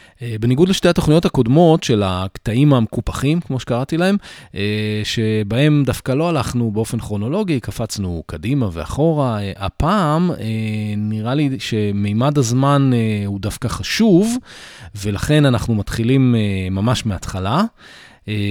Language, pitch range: Hebrew, 100-135 Hz